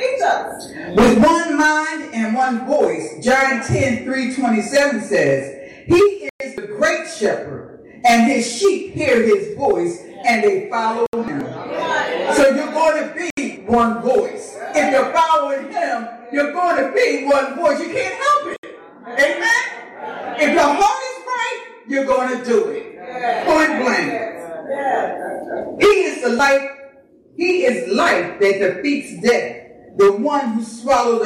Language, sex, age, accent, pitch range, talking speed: English, female, 40-59, American, 240-330 Hz, 145 wpm